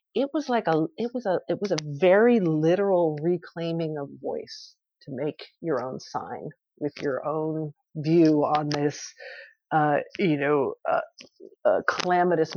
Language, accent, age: English, American, 50-69